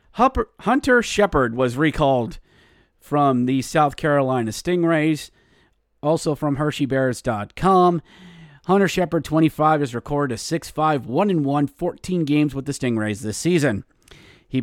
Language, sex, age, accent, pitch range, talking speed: English, male, 30-49, American, 120-155 Hz, 110 wpm